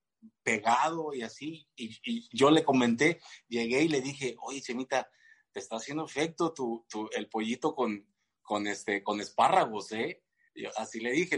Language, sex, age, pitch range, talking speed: Spanish, male, 30-49, 110-150 Hz, 170 wpm